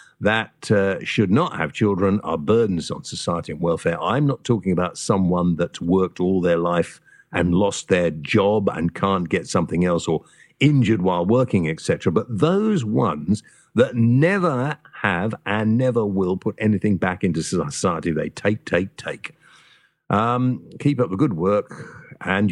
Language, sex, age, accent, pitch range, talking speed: English, male, 50-69, British, 90-125 Hz, 165 wpm